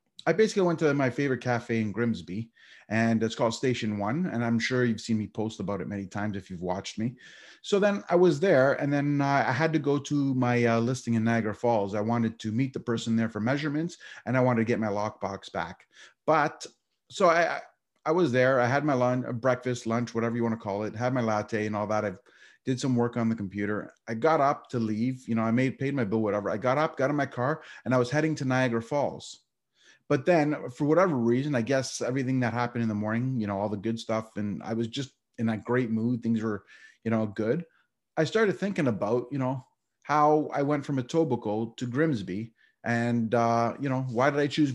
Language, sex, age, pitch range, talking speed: English, male, 30-49, 110-135 Hz, 235 wpm